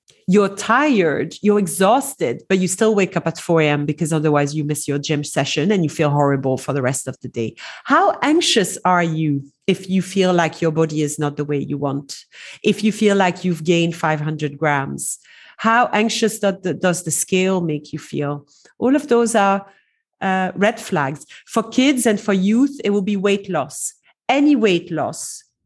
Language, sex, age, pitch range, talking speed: English, female, 40-59, 160-210 Hz, 190 wpm